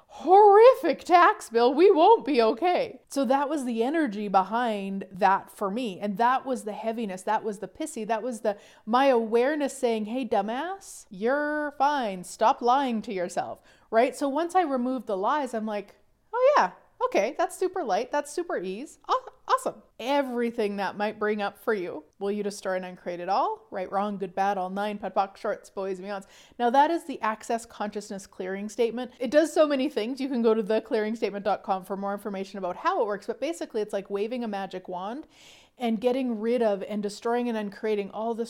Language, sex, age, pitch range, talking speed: English, female, 30-49, 205-280 Hz, 200 wpm